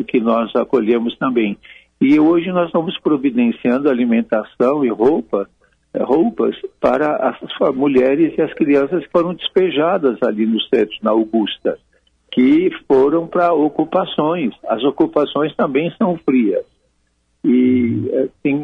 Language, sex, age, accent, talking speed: Portuguese, male, 60-79, Brazilian, 120 wpm